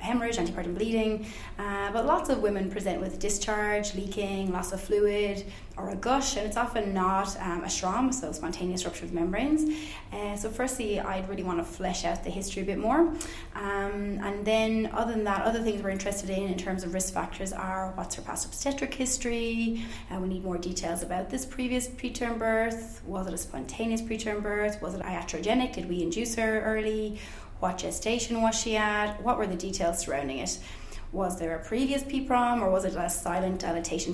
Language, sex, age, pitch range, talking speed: English, female, 20-39, 185-225 Hz, 200 wpm